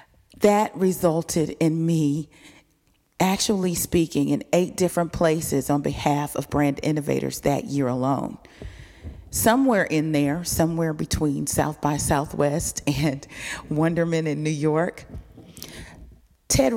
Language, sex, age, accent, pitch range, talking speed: English, female, 40-59, American, 145-195 Hz, 115 wpm